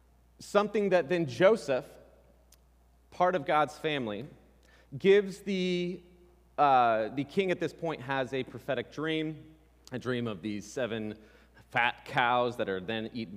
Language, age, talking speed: English, 30-49, 140 wpm